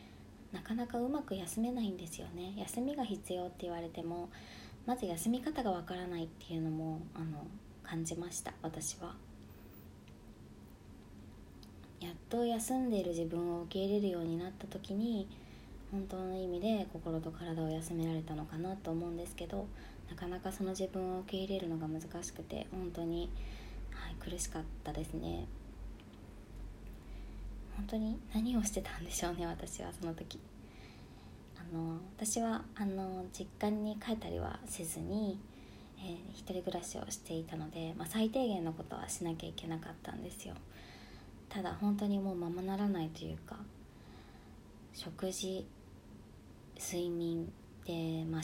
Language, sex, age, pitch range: Japanese, male, 20-39, 160-195 Hz